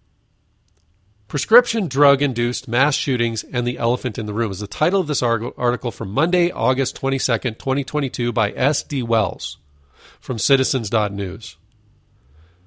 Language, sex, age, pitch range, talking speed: English, male, 40-59, 110-145 Hz, 130 wpm